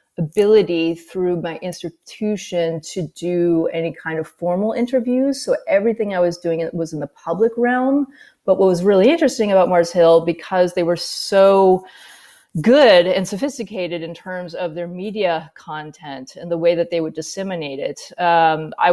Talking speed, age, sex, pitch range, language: 165 wpm, 30-49, female, 165-195 Hz, English